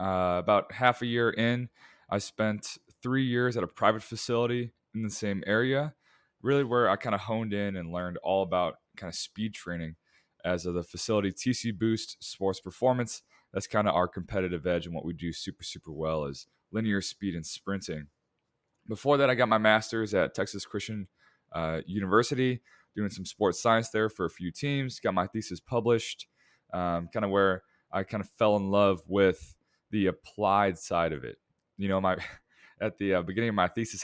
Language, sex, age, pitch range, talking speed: English, male, 20-39, 90-115 Hz, 190 wpm